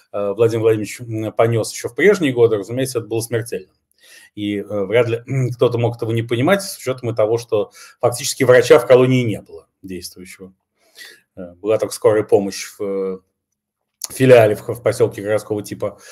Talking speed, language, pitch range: 150 wpm, Russian, 115-150 Hz